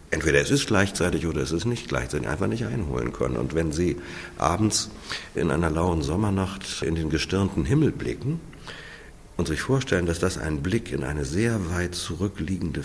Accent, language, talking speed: German, German, 175 wpm